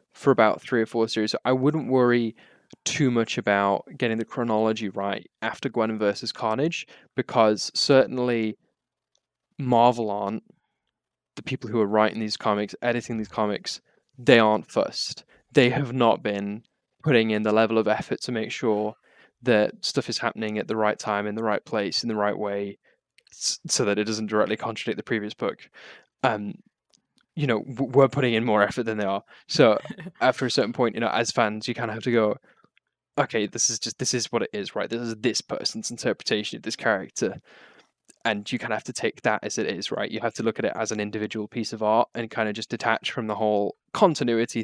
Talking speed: 205 wpm